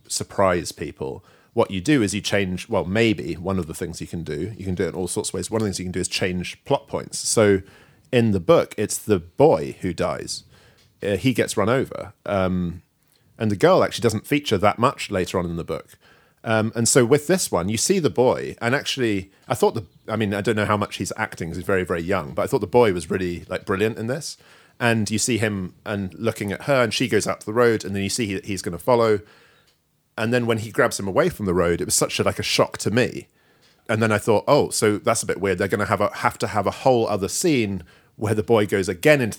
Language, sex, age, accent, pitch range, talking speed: English, male, 40-59, British, 95-115 Hz, 270 wpm